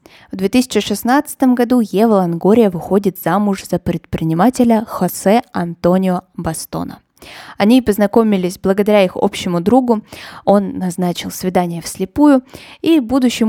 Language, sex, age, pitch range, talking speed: Russian, female, 20-39, 180-235 Hz, 105 wpm